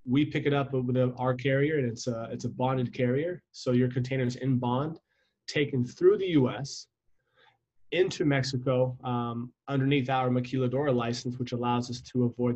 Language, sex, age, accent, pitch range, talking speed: English, male, 20-39, American, 120-135 Hz, 175 wpm